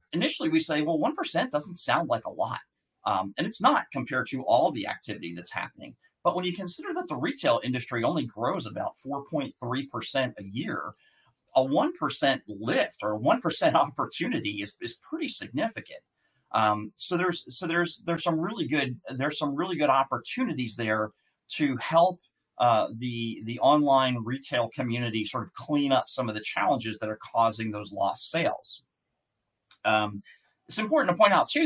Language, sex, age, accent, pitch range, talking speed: English, male, 40-59, American, 115-165 Hz, 180 wpm